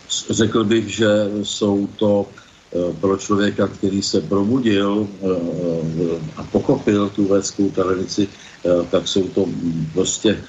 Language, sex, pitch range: Slovak, male, 95-105 Hz